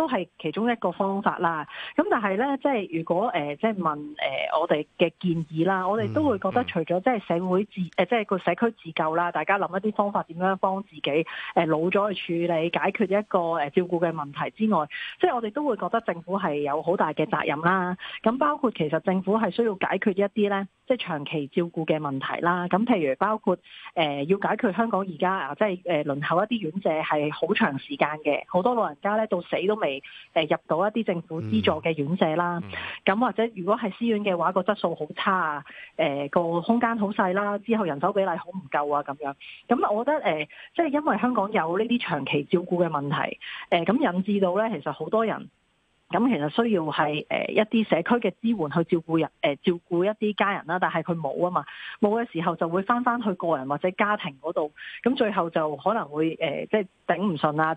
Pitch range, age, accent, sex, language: 160-215 Hz, 30-49, native, female, Chinese